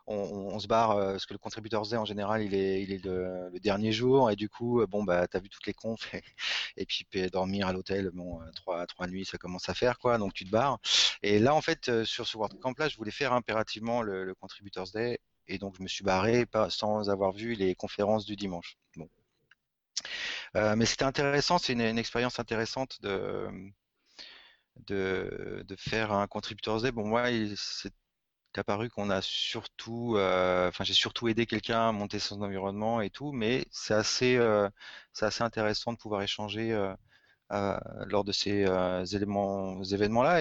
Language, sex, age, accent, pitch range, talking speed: French, male, 30-49, French, 95-115 Hz, 200 wpm